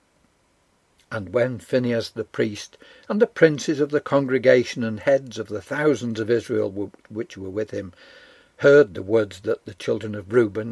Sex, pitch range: male, 110-150 Hz